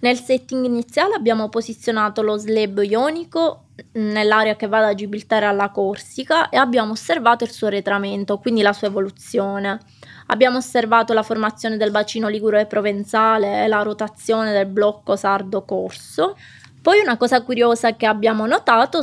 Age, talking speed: 20-39, 150 wpm